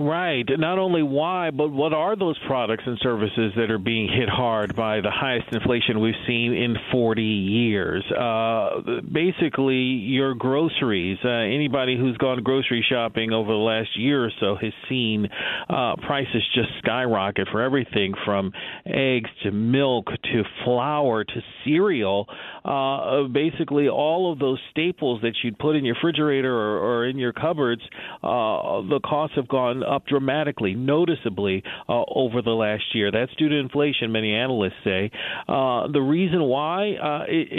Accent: American